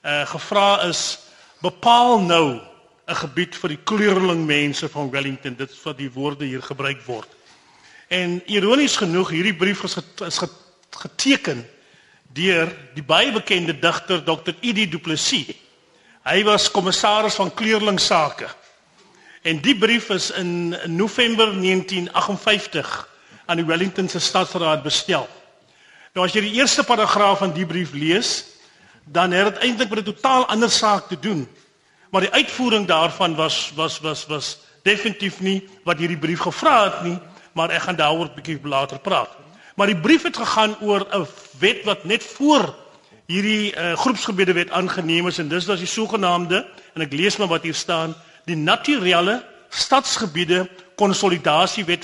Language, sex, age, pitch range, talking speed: Dutch, male, 40-59, 165-210 Hz, 155 wpm